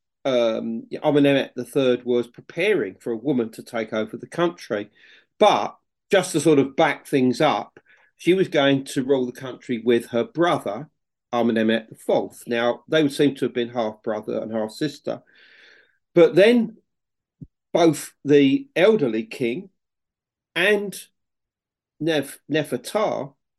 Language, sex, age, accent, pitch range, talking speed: English, male, 40-59, British, 120-150 Hz, 140 wpm